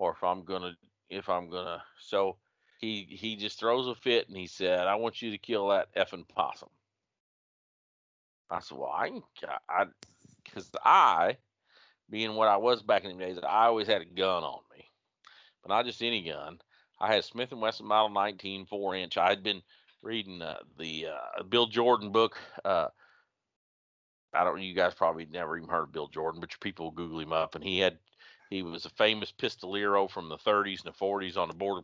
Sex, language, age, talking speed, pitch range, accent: male, English, 40-59, 200 wpm, 90-110 Hz, American